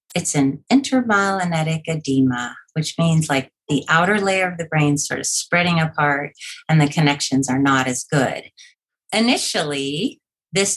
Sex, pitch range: female, 145-180 Hz